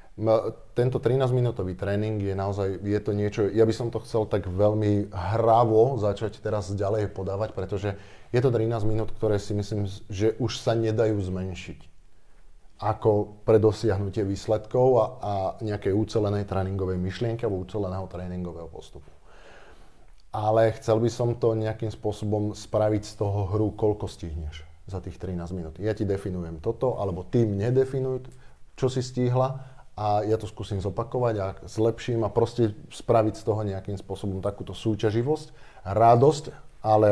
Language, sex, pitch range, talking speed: Slovak, male, 100-115 Hz, 150 wpm